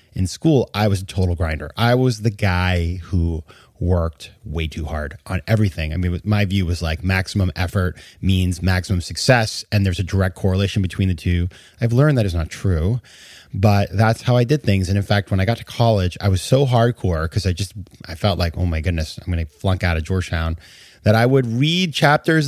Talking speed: 220 wpm